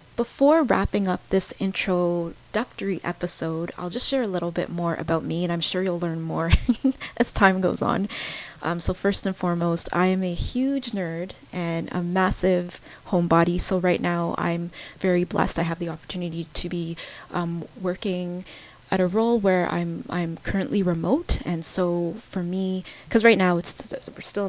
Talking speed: 175 wpm